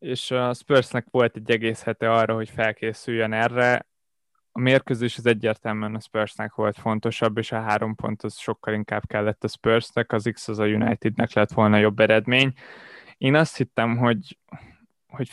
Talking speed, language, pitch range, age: 170 wpm, Hungarian, 110-125 Hz, 20-39